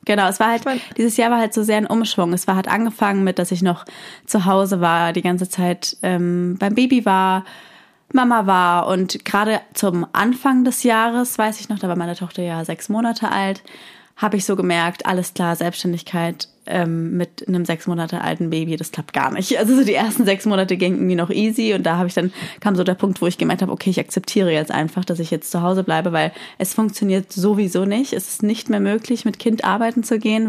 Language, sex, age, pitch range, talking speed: German, female, 20-39, 180-215 Hz, 230 wpm